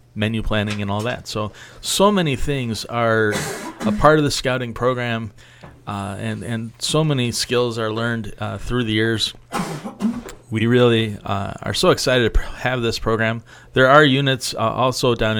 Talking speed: 170 wpm